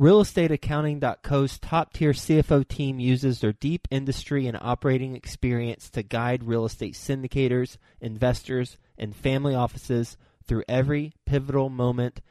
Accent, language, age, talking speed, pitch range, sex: American, English, 30-49, 120 wpm, 120-145 Hz, male